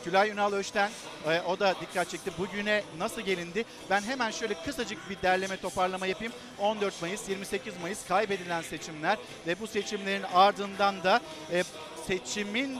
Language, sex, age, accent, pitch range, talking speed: Turkish, male, 50-69, native, 190-225 Hz, 140 wpm